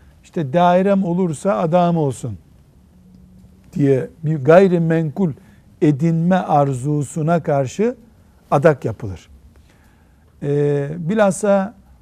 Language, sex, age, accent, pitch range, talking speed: Turkish, male, 60-79, native, 115-185 Hz, 70 wpm